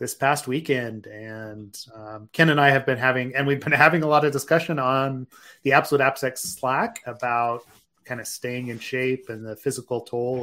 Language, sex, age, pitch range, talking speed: English, male, 30-49, 115-135 Hz, 195 wpm